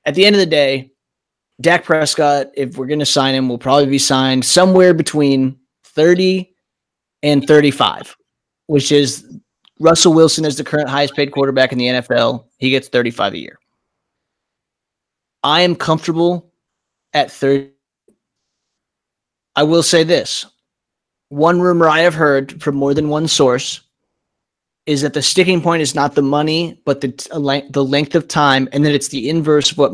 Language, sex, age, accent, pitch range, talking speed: English, male, 20-39, American, 135-155 Hz, 160 wpm